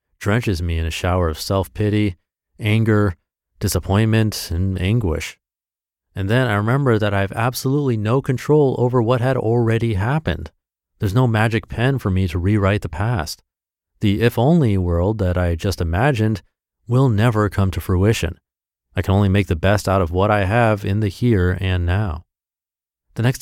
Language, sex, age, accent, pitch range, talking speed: English, male, 30-49, American, 90-120 Hz, 170 wpm